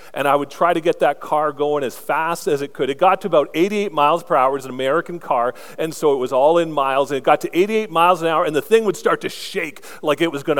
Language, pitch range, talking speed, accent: English, 130-165 Hz, 300 wpm, American